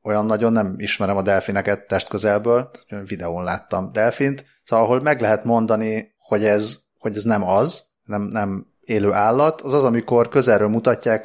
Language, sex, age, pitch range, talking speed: Hungarian, male, 30-49, 100-115 Hz, 155 wpm